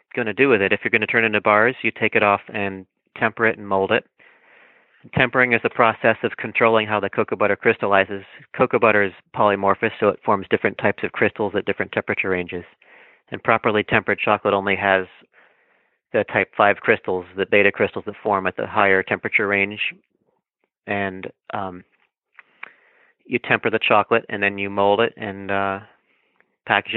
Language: English